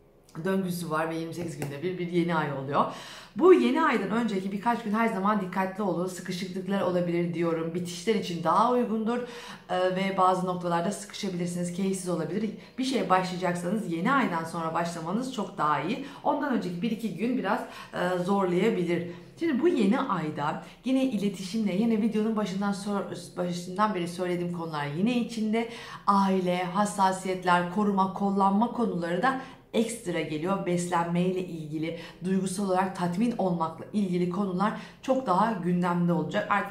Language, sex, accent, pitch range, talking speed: Turkish, female, native, 175-215 Hz, 145 wpm